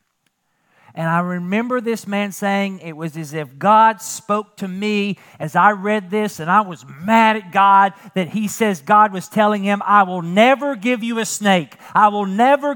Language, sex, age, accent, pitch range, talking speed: English, male, 50-69, American, 155-205 Hz, 195 wpm